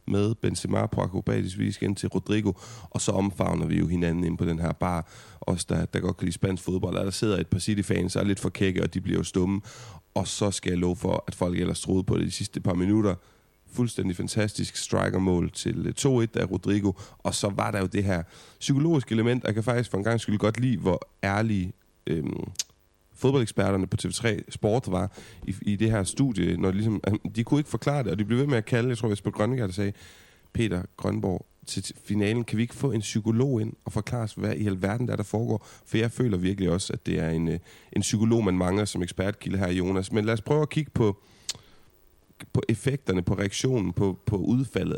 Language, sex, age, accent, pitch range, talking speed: Danish, male, 30-49, native, 95-115 Hz, 220 wpm